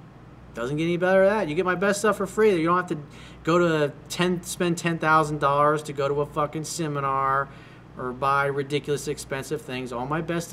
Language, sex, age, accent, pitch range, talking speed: English, male, 40-59, American, 135-170 Hz, 205 wpm